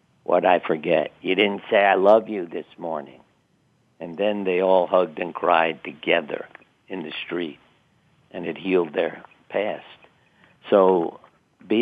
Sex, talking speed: male, 145 wpm